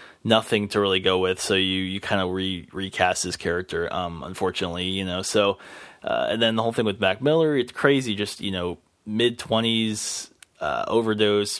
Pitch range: 95-110 Hz